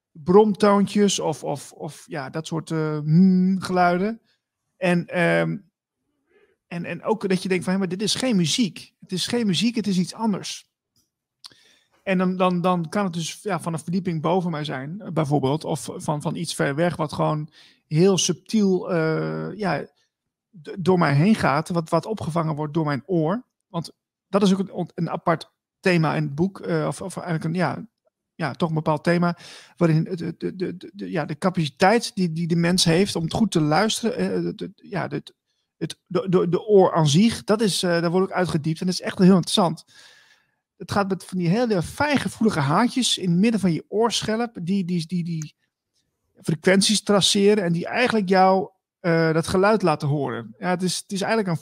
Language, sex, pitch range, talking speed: Dutch, male, 160-200 Hz, 190 wpm